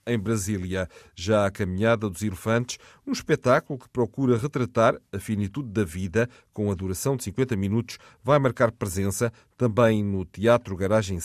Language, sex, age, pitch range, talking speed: Portuguese, male, 40-59, 100-125 Hz, 155 wpm